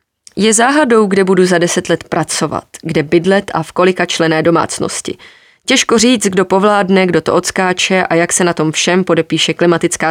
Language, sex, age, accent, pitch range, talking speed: Czech, female, 20-39, native, 160-195 Hz, 180 wpm